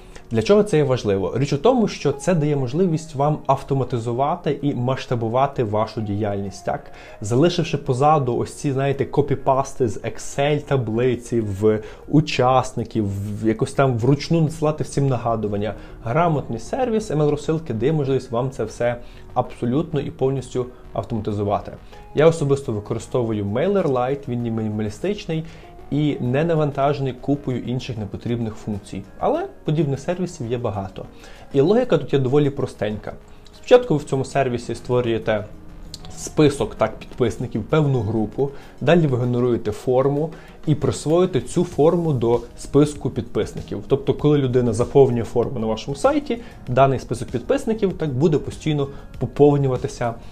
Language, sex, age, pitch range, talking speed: Ukrainian, male, 20-39, 115-145 Hz, 130 wpm